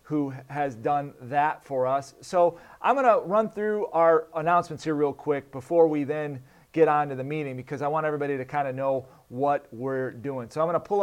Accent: American